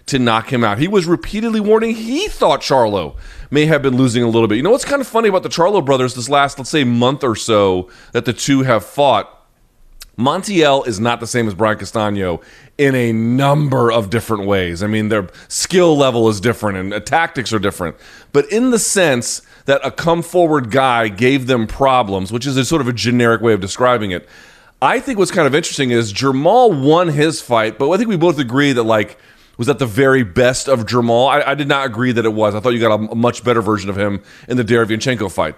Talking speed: 230 wpm